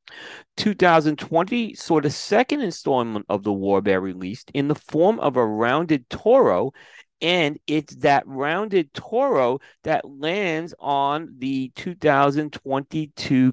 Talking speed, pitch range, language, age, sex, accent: 120 wpm, 130-165 Hz, English, 40-59, male, American